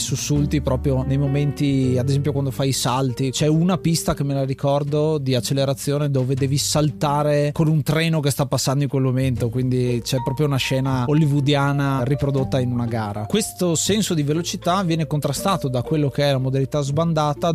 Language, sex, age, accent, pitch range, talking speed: Italian, male, 30-49, native, 130-155 Hz, 185 wpm